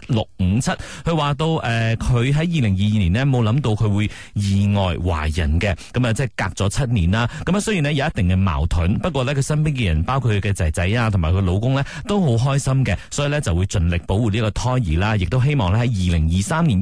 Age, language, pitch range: 30-49, Chinese, 105-155 Hz